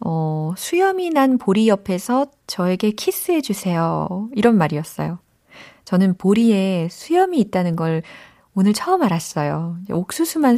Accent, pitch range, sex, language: native, 165-235 Hz, female, Korean